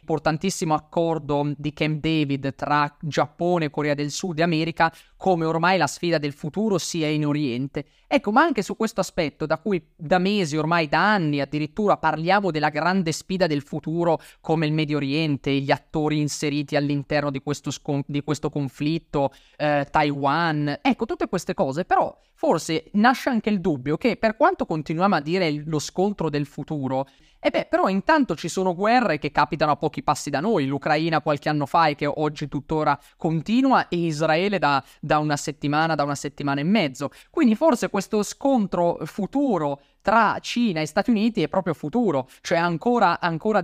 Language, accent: Italian, native